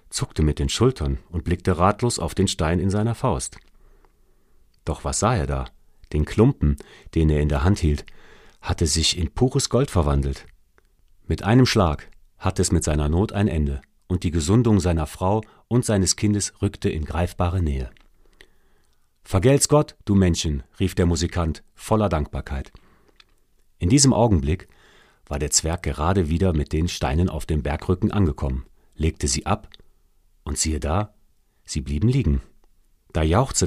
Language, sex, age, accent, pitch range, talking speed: German, male, 40-59, German, 75-100 Hz, 160 wpm